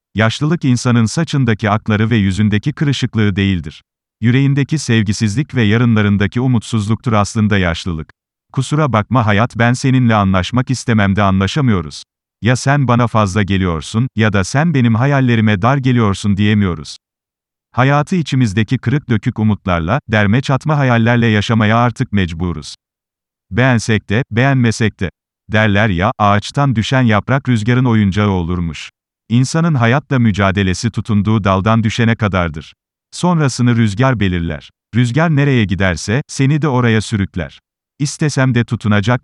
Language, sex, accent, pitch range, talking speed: Turkish, male, native, 100-130 Hz, 120 wpm